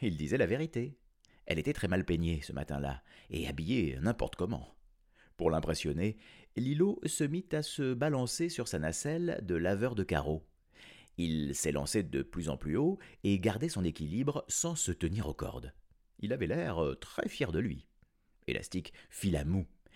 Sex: male